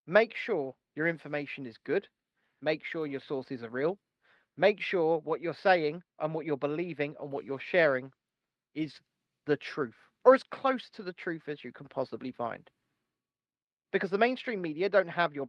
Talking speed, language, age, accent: 180 wpm, English, 30-49, British